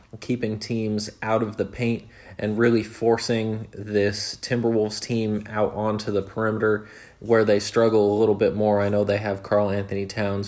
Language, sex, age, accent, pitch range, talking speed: English, male, 20-39, American, 100-115 Hz, 170 wpm